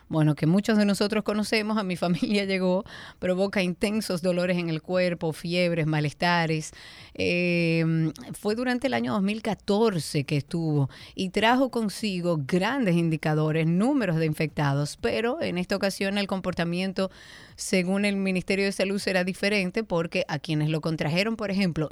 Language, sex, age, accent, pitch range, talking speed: Spanish, female, 30-49, American, 165-200 Hz, 150 wpm